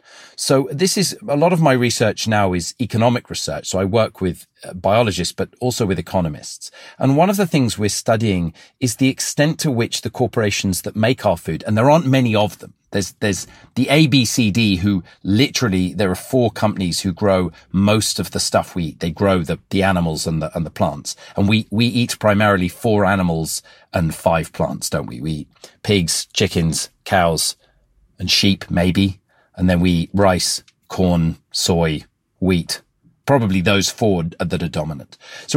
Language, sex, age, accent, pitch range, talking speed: English, male, 40-59, British, 95-135 Hz, 180 wpm